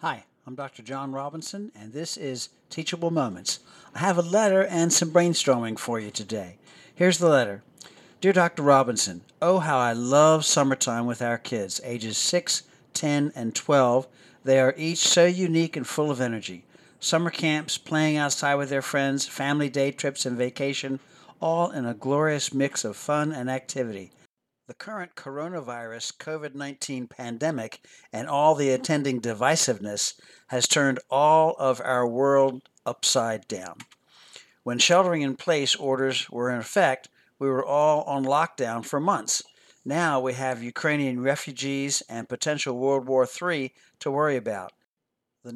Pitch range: 125-155 Hz